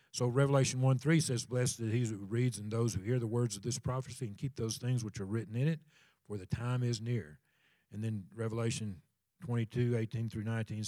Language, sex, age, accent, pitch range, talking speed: English, male, 50-69, American, 110-130 Hz, 200 wpm